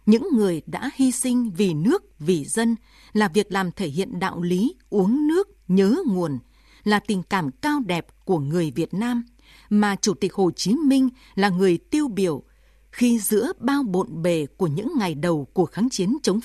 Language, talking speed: Vietnamese, 190 wpm